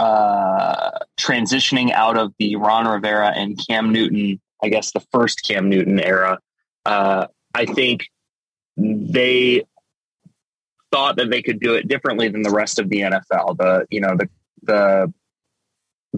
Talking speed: 145 wpm